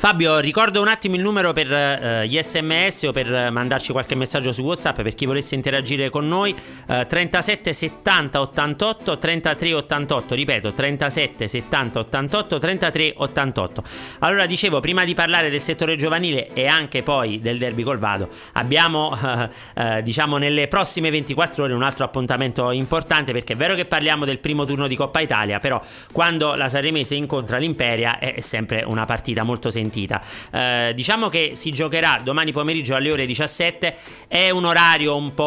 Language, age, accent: Italian, 30-49, native